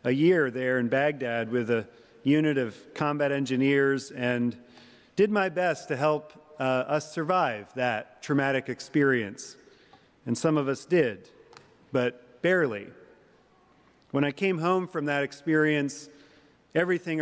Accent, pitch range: American, 130-150 Hz